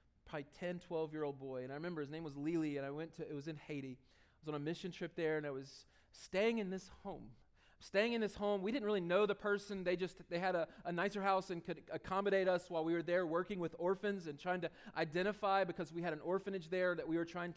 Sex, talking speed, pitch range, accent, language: male, 265 wpm, 160-200 Hz, American, English